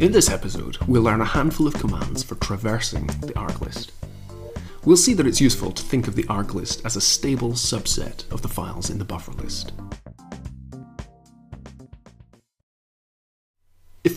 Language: English